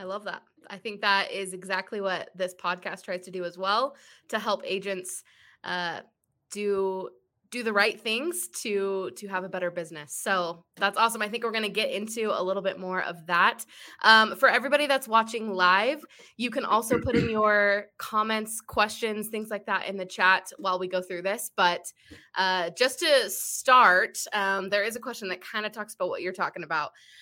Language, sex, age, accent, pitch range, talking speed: English, female, 20-39, American, 185-220 Hz, 200 wpm